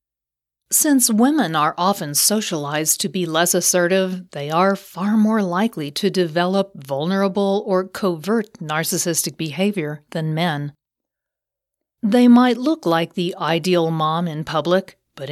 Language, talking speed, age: English, 130 wpm, 40-59